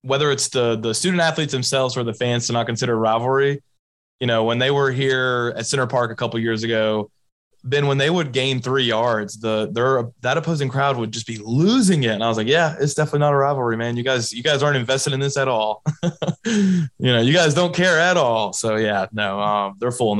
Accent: American